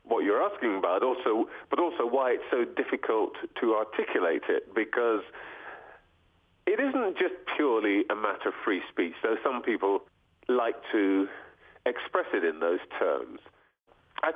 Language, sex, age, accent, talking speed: English, male, 40-59, British, 145 wpm